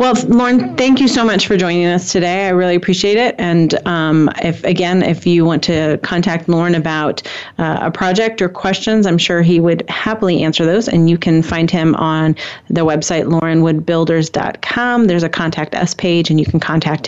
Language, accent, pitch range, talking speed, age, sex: English, American, 165-205 Hz, 195 wpm, 30-49, female